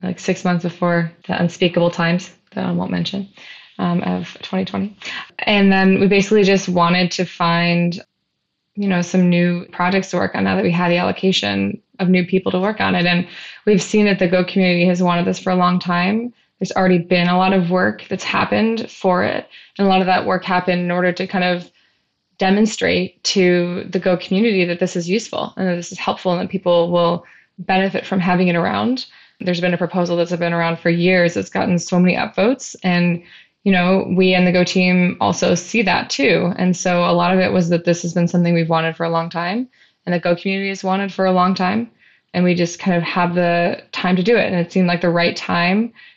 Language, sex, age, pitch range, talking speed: English, female, 20-39, 175-190 Hz, 225 wpm